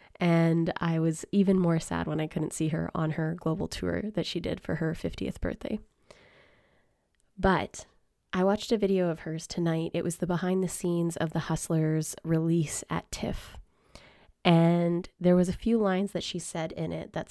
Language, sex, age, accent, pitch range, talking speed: English, female, 20-39, American, 155-175 Hz, 185 wpm